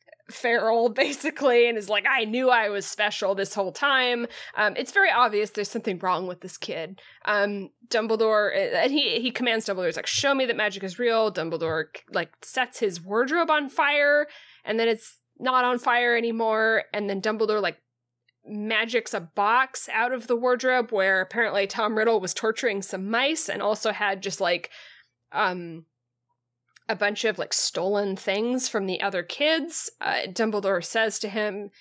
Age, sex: 20-39, female